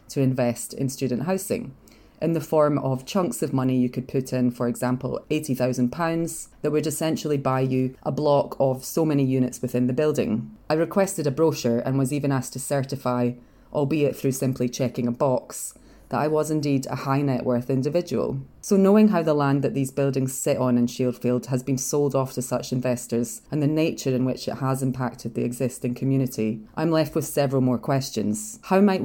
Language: English